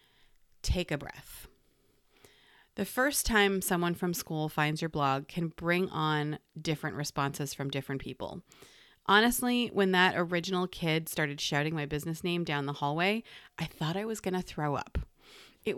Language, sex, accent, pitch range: English, female, American, 155-205 Hz